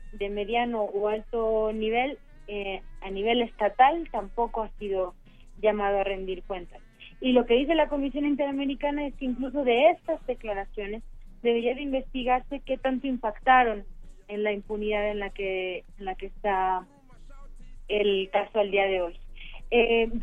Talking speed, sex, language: 155 wpm, female, Spanish